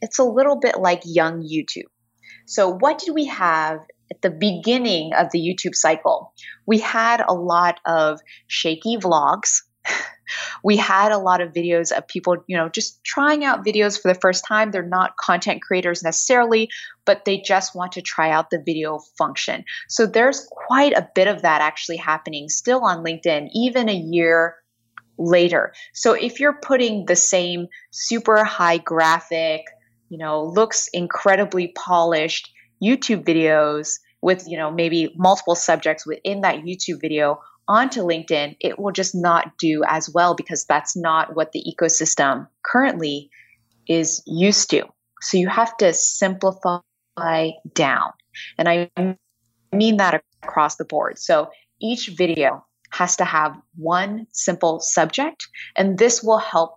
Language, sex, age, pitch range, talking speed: English, female, 20-39, 160-205 Hz, 155 wpm